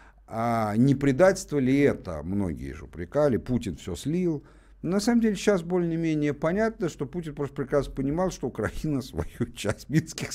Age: 50-69